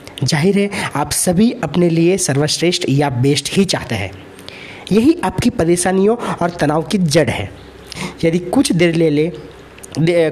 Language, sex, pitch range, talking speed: Hindi, male, 145-190 Hz, 150 wpm